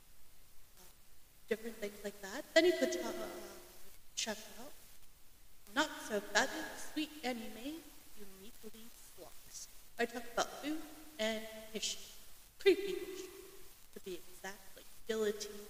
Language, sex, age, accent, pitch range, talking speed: English, female, 30-49, American, 200-295 Hz, 125 wpm